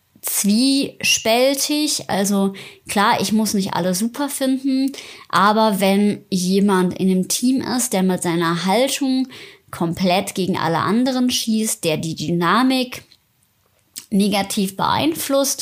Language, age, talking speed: German, 20-39, 115 wpm